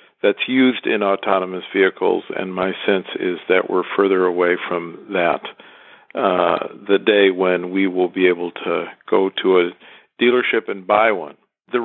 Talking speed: 160 wpm